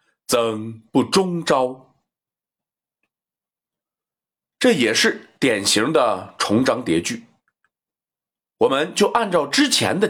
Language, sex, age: Chinese, male, 30-49